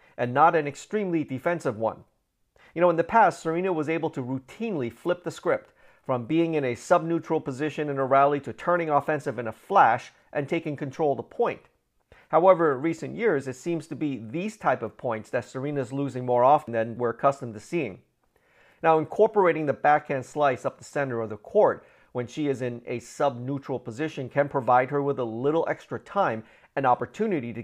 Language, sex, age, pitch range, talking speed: English, male, 40-59, 125-155 Hz, 200 wpm